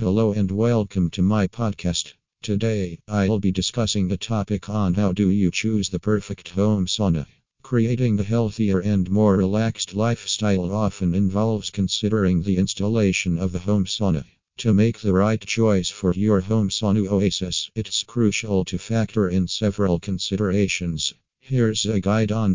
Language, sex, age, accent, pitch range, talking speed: English, male, 50-69, American, 95-110 Hz, 155 wpm